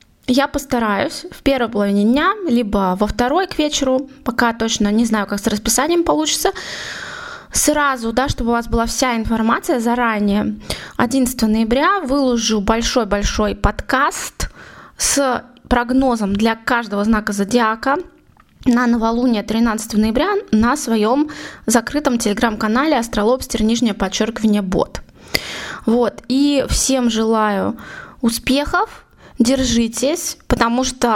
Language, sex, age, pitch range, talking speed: Russian, female, 20-39, 220-275 Hz, 110 wpm